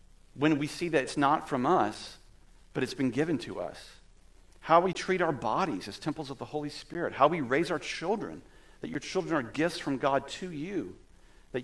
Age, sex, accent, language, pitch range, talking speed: 40-59, male, American, English, 120-165 Hz, 205 wpm